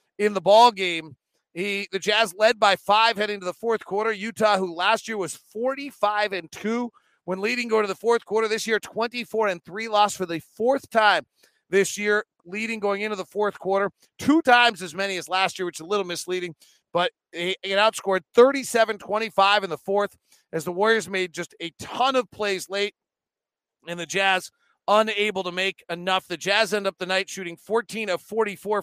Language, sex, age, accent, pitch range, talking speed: English, male, 40-59, American, 180-215 Hz, 195 wpm